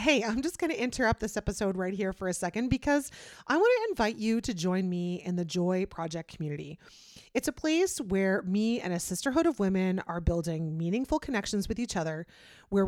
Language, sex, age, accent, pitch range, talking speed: English, female, 30-49, American, 185-270 Hz, 210 wpm